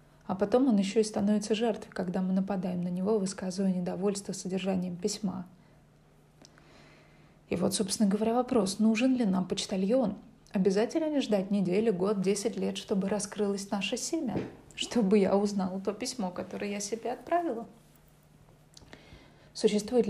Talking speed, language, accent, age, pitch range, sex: 135 wpm, Russian, native, 20-39, 190-210 Hz, female